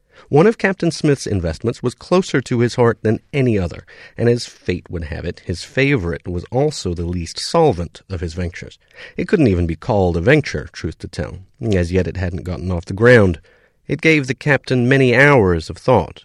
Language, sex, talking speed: English, male, 205 wpm